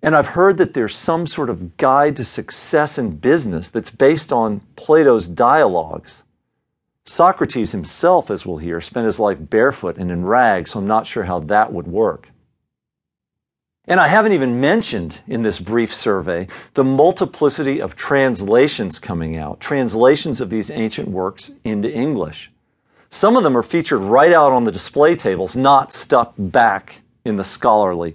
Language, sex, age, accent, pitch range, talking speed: English, male, 50-69, American, 100-150 Hz, 165 wpm